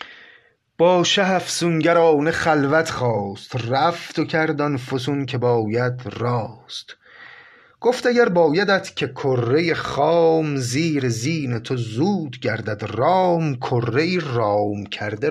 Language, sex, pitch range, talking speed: Persian, male, 110-150 Hz, 100 wpm